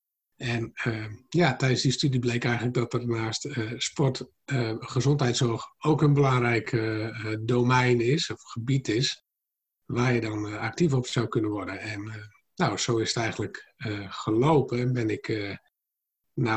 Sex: male